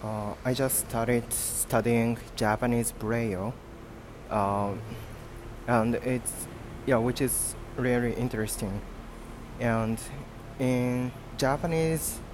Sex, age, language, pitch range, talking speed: male, 20-39, English, 105-125 Hz, 90 wpm